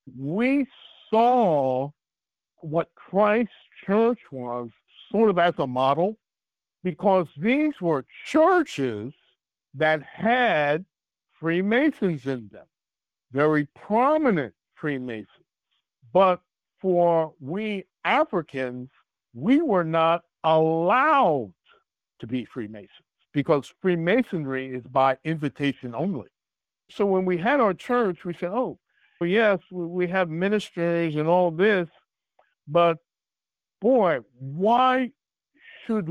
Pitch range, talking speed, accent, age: 140-200 Hz, 100 wpm, American, 60-79